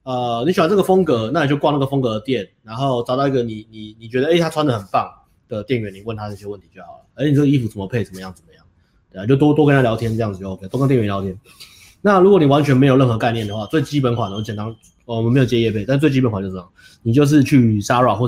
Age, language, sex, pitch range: 30-49, Chinese, male, 100-135 Hz